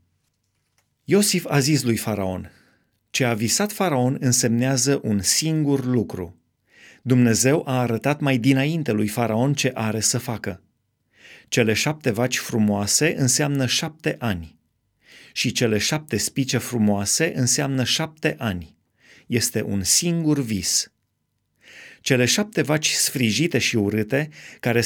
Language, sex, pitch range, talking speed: Romanian, male, 110-150 Hz, 120 wpm